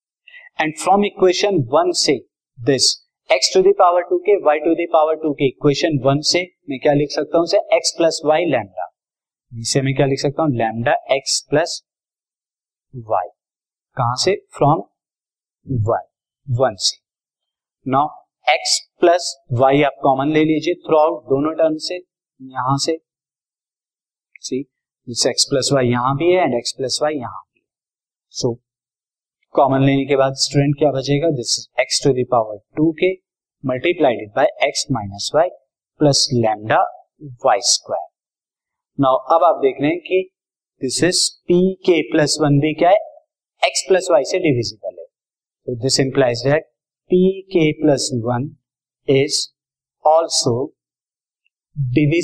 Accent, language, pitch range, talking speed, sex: native, Hindi, 135-175 Hz, 100 wpm, male